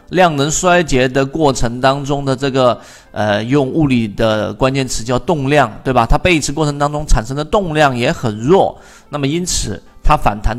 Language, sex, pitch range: Chinese, male, 115-155 Hz